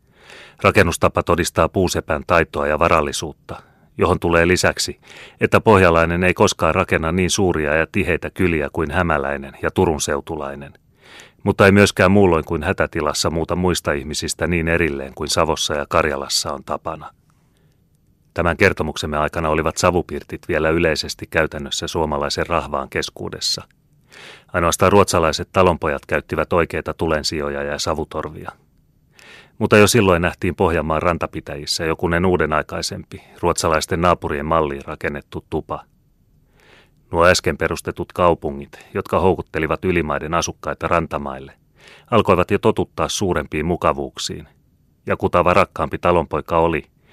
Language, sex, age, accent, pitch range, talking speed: Finnish, male, 30-49, native, 80-90 Hz, 115 wpm